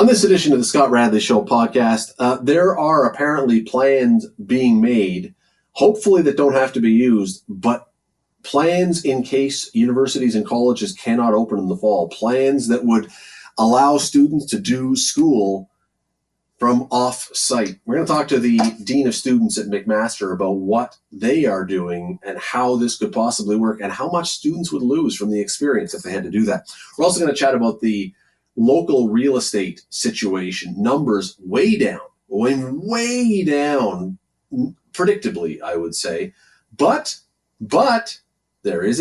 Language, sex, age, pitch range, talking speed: English, male, 30-49, 115-180 Hz, 160 wpm